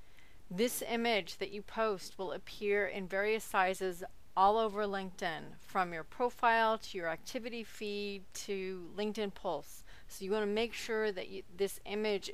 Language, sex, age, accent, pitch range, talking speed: English, female, 40-59, American, 185-210 Hz, 155 wpm